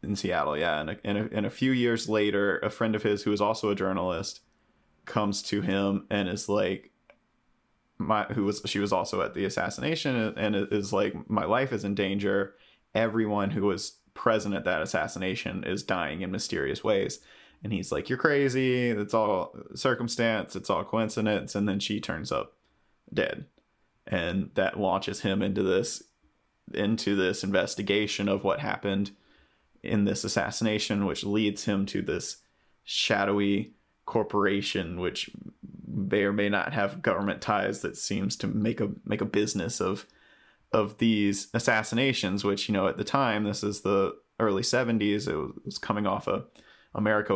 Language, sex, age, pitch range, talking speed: English, male, 20-39, 100-110 Hz, 165 wpm